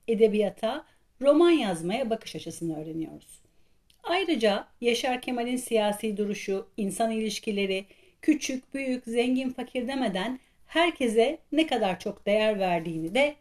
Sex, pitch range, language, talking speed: female, 180-255 Hz, Turkish, 110 wpm